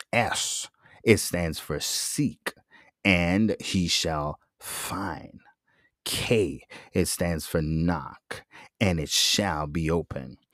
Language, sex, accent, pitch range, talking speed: English, male, American, 80-95 Hz, 110 wpm